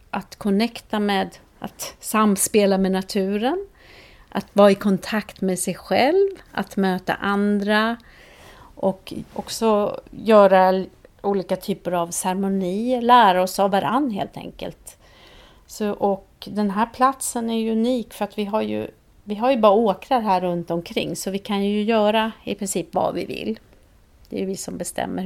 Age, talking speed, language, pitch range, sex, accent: 40-59, 150 wpm, Swedish, 180-215 Hz, female, native